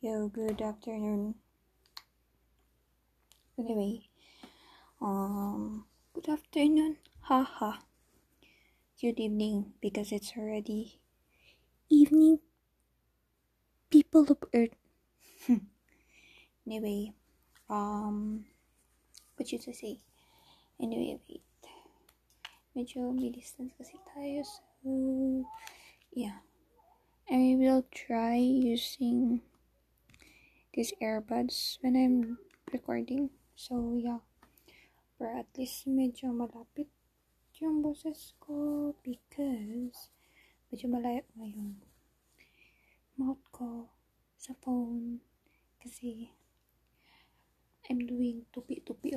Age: 10-29